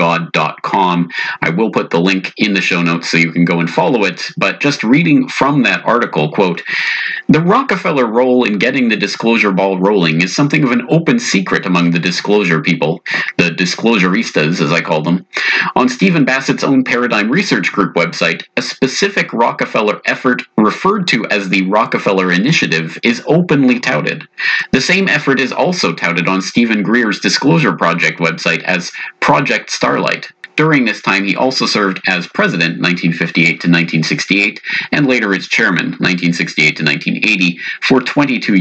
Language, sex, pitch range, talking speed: English, male, 85-130 Hz, 165 wpm